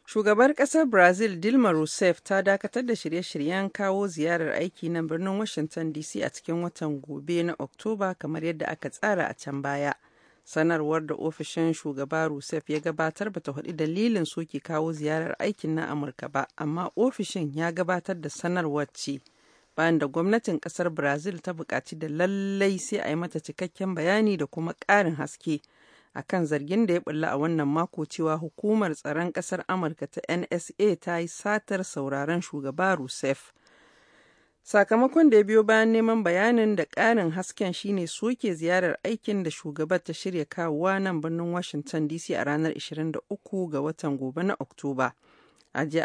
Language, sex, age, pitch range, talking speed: English, female, 40-59, 155-190 Hz, 150 wpm